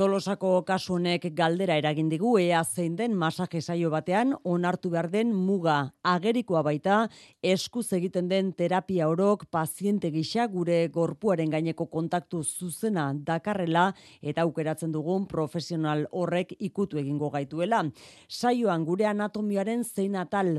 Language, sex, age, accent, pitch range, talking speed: Spanish, female, 30-49, Spanish, 155-195 Hz, 120 wpm